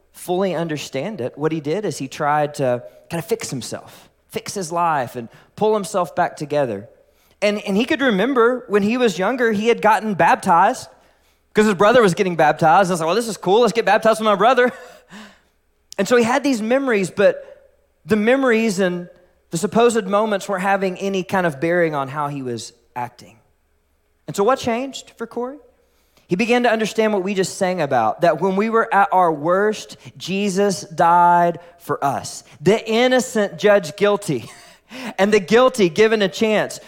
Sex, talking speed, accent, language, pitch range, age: male, 185 wpm, American, English, 165-220 Hz, 20-39